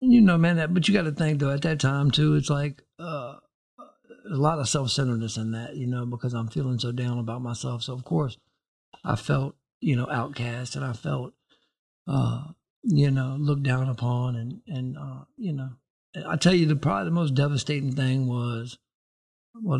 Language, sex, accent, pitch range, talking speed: English, male, American, 125-145 Hz, 195 wpm